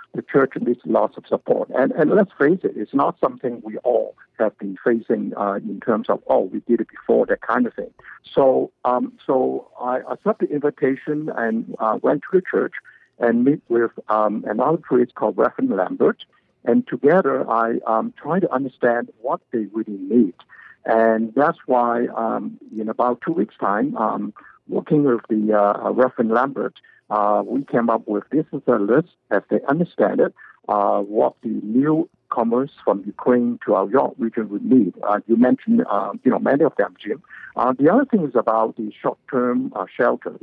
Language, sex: English, male